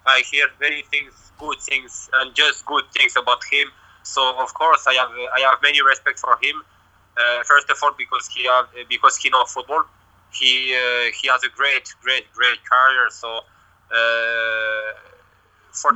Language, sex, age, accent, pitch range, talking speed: English, male, 20-39, Polish, 120-140 Hz, 175 wpm